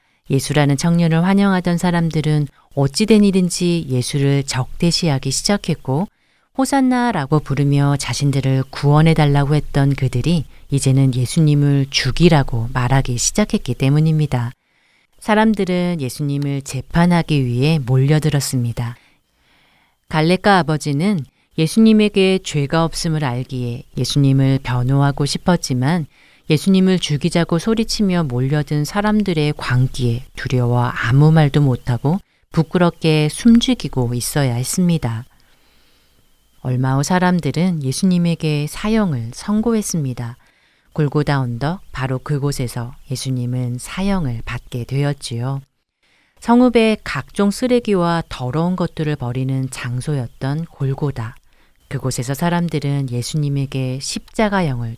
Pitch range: 130-170 Hz